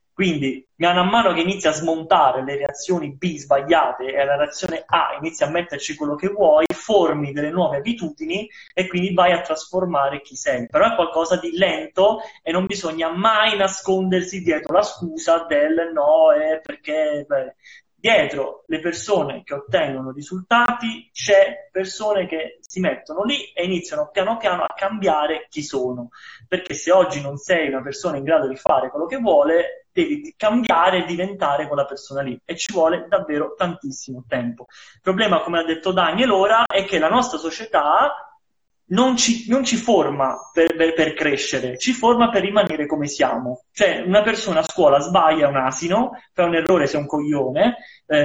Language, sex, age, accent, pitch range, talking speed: Italian, male, 30-49, native, 150-200 Hz, 175 wpm